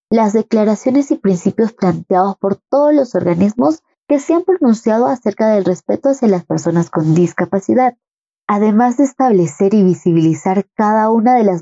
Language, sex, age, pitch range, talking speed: Spanish, female, 20-39, 180-230 Hz, 155 wpm